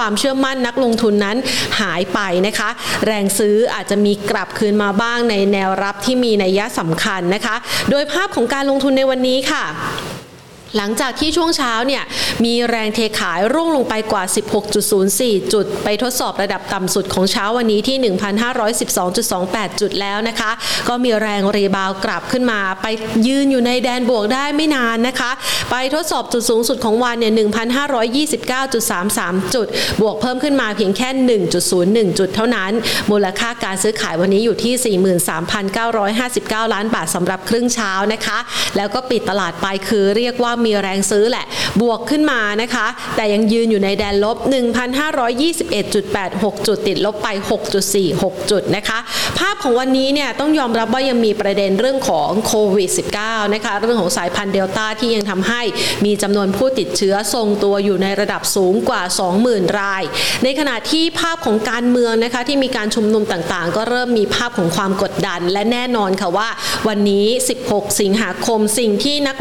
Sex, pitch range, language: female, 200-245 Hz, Thai